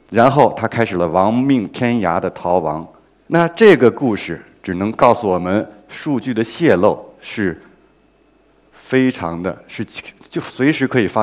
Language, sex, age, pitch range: Chinese, male, 50-69, 100-140 Hz